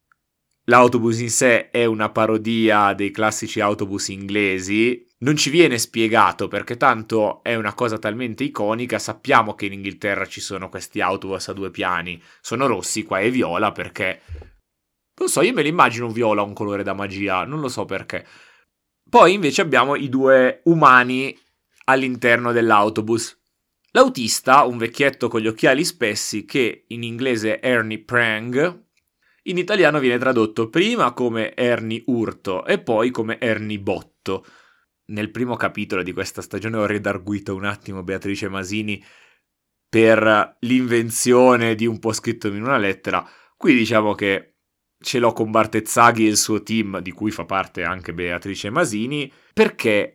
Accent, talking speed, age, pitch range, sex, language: native, 150 wpm, 20-39, 100-120 Hz, male, Italian